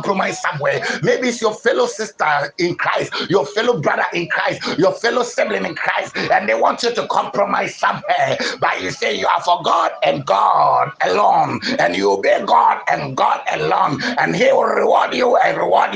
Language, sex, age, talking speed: English, male, 60-79, 185 wpm